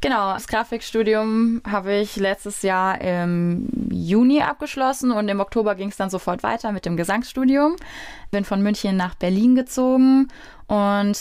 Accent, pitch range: German, 180-210 Hz